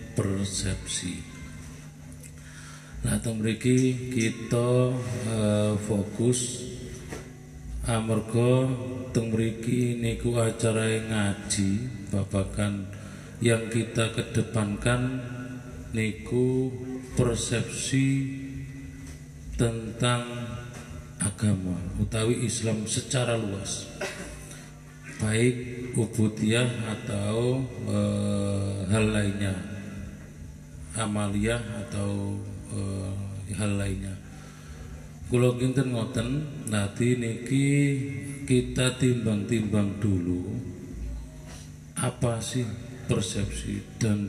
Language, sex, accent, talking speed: Indonesian, male, native, 65 wpm